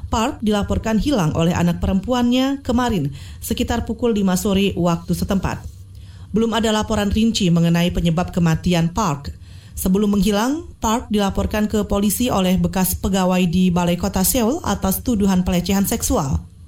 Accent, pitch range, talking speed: native, 170-230 Hz, 135 wpm